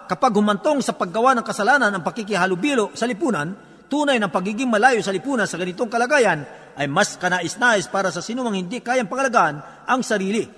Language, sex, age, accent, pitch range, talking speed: Filipino, male, 50-69, native, 190-250 Hz, 170 wpm